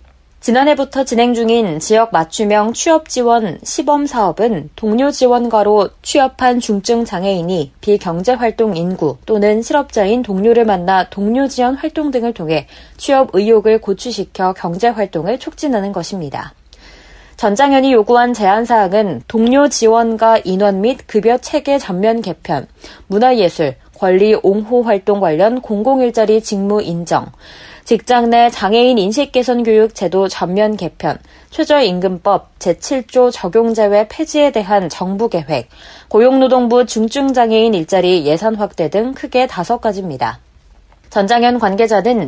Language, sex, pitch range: Korean, female, 195-250 Hz